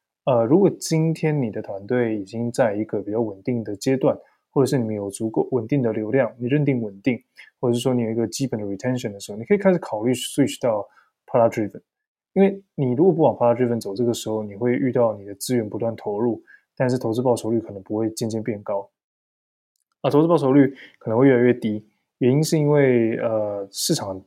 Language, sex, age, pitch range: Chinese, male, 20-39, 110-130 Hz